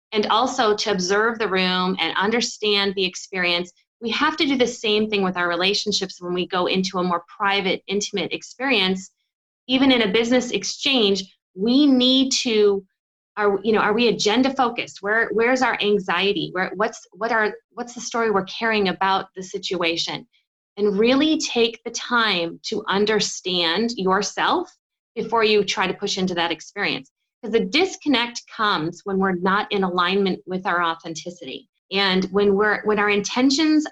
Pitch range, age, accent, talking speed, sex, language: 190-230 Hz, 20-39, American, 165 wpm, female, English